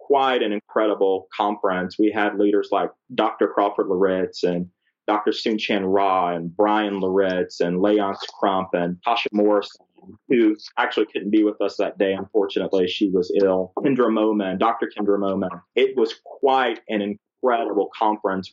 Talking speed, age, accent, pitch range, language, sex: 155 wpm, 30-49, American, 100-140 Hz, English, male